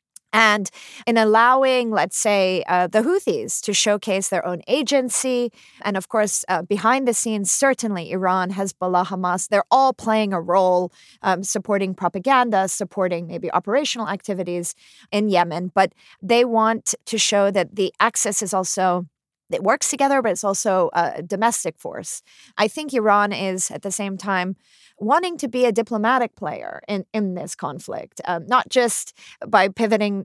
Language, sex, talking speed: English, female, 160 wpm